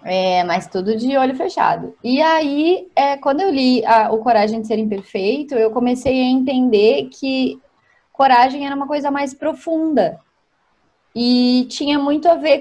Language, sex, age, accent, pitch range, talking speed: Portuguese, female, 20-39, Brazilian, 225-325 Hz, 160 wpm